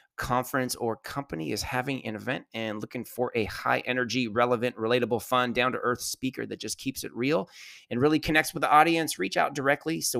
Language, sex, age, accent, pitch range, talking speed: English, male, 30-49, American, 120-140 Hz, 195 wpm